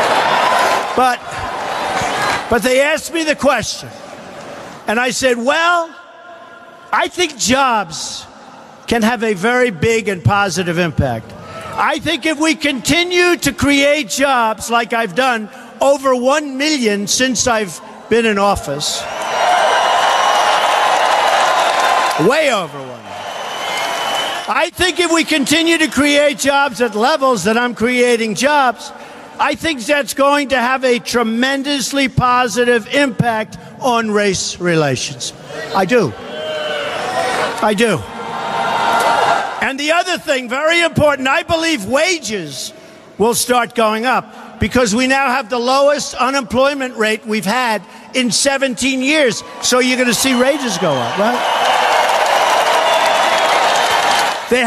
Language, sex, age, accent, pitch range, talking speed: English, male, 50-69, American, 225-290 Hz, 120 wpm